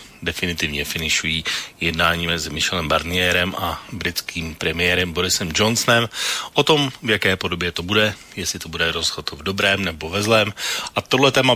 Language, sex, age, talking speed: Slovak, male, 40-59, 160 wpm